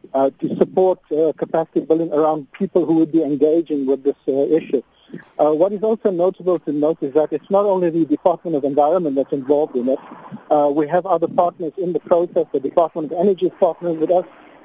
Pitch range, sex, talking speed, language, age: 150-180 Hz, male, 215 wpm, English, 50-69